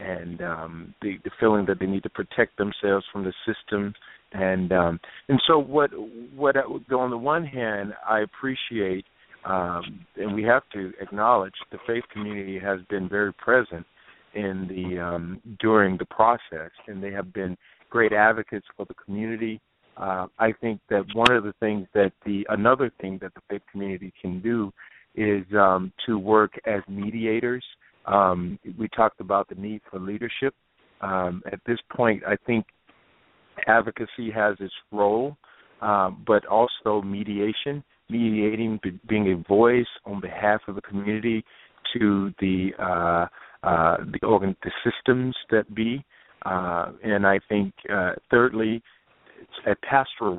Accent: American